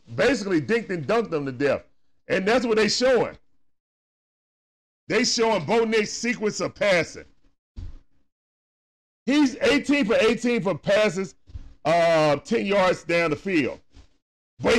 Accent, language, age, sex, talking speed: American, English, 40-59, male, 130 wpm